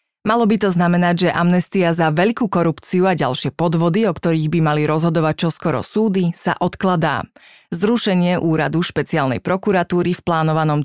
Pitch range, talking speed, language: 165-190 Hz, 150 wpm, Slovak